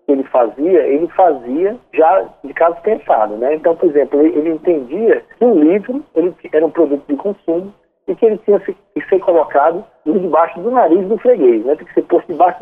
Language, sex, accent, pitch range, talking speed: Portuguese, male, Brazilian, 150-215 Hz, 205 wpm